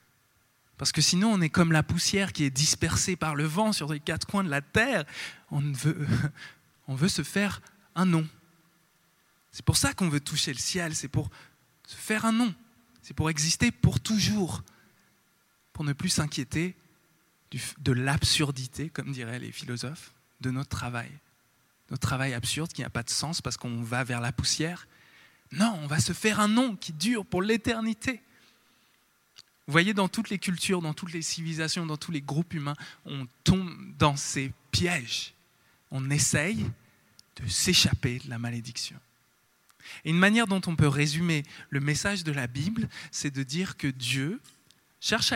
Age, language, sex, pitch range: 20-39, French, male, 130-175 Hz